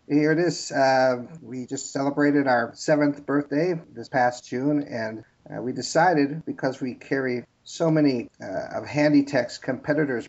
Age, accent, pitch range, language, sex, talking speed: 50-69, American, 120-150 Hz, English, male, 150 wpm